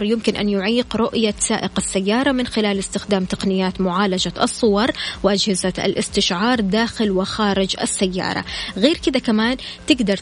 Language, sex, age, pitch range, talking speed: Arabic, female, 20-39, 190-225 Hz, 125 wpm